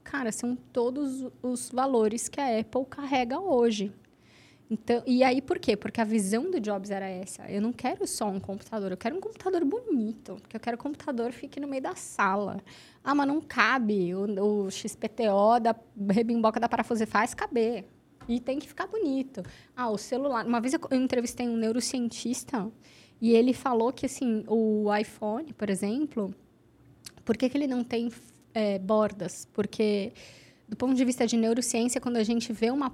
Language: Portuguese